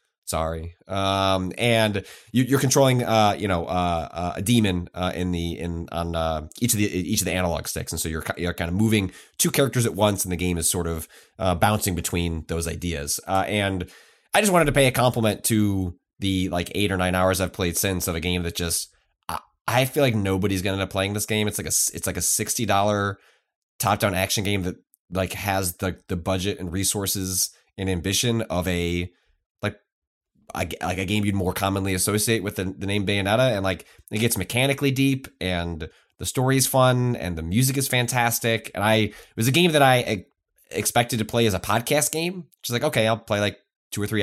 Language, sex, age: English, male, 20-39